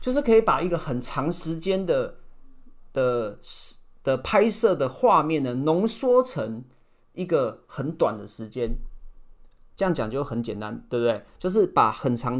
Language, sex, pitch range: Chinese, male, 120-190 Hz